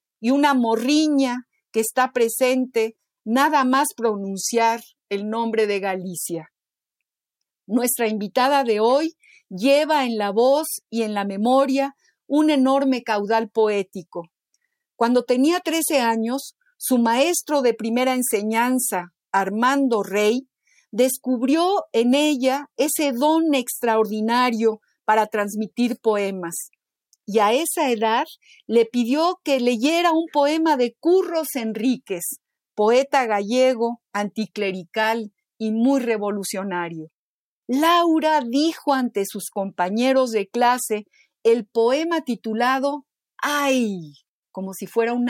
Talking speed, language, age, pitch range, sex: 110 wpm, Spanish, 50-69, 215-280 Hz, female